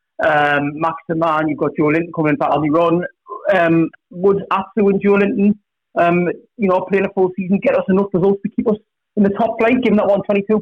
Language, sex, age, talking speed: English, male, 30-49, 220 wpm